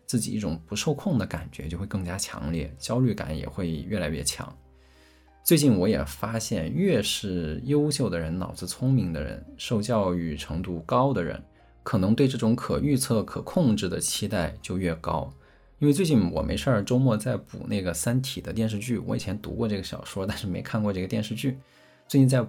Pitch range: 85-120 Hz